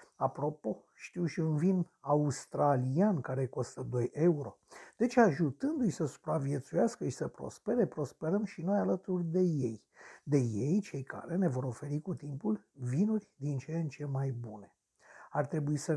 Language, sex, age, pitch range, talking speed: Romanian, male, 50-69, 145-195 Hz, 160 wpm